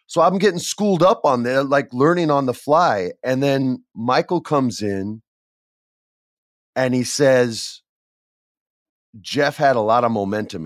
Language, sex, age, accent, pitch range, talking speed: English, male, 30-49, American, 110-145 Hz, 145 wpm